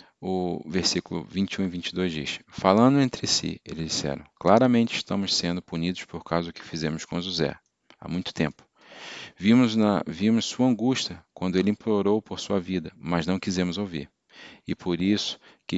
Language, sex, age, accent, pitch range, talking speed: Portuguese, male, 40-59, Brazilian, 85-100 Hz, 165 wpm